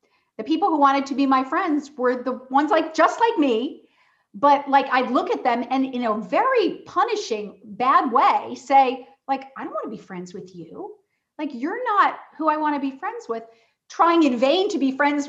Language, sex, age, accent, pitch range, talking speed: English, female, 40-59, American, 200-275 Hz, 210 wpm